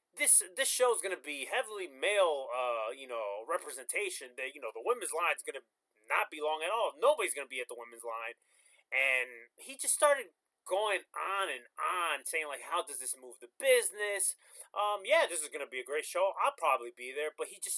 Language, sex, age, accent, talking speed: English, male, 30-49, American, 215 wpm